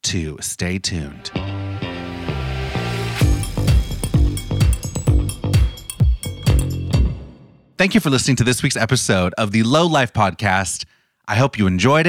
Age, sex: 30-49, male